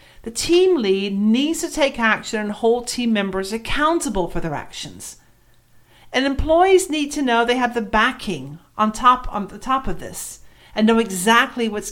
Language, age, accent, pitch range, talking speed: English, 40-59, American, 200-280 Hz, 175 wpm